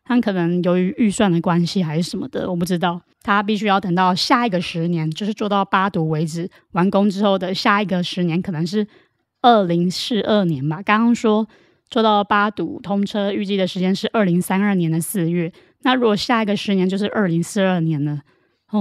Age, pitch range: 20-39, 175-215 Hz